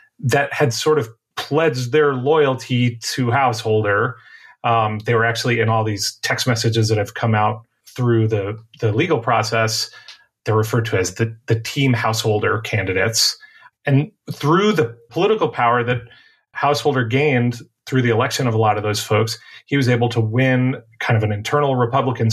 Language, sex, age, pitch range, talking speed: English, male, 30-49, 110-140 Hz, 170 wpm